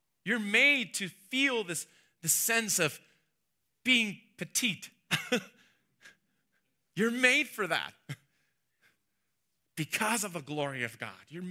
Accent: American